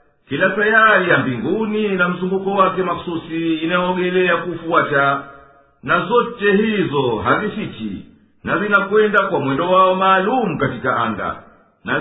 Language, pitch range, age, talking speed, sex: Swahili, 155-205 Hz, 50-69, 115 wpm, male